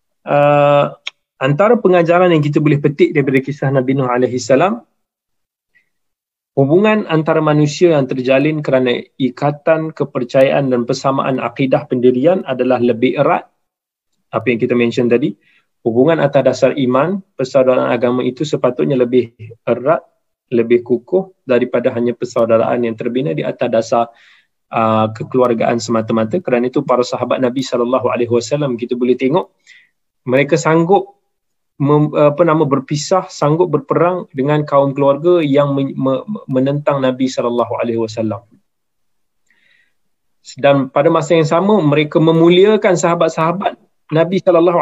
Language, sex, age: Malay, male, 20-39